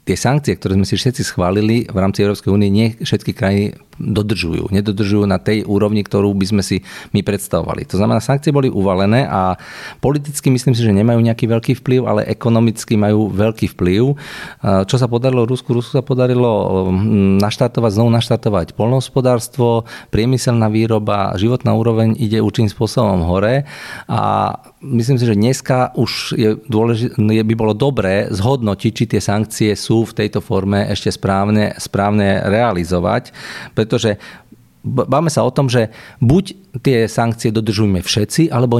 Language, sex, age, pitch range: Slovak, male, 40-59, 105-125 Hz